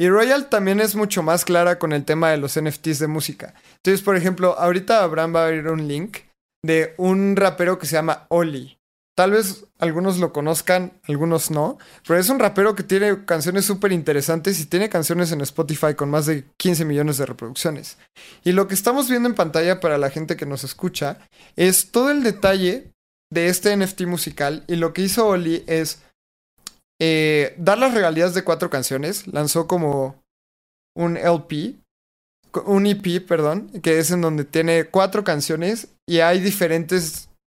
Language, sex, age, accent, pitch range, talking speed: Spanish, male, 20-39, Mexican, 155-195 Hz, 180 wpm